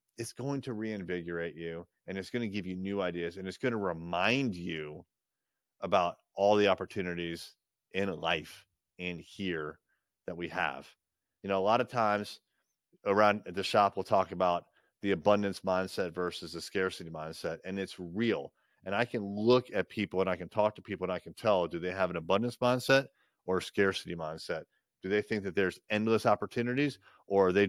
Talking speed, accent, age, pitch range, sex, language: 190 wpm, American, 30-49, 90-105 Hz, male, English